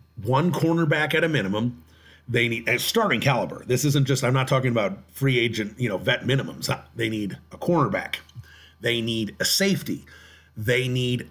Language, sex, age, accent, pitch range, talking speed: English, male, 40-59, American, 110-140 Hz, 175 wpm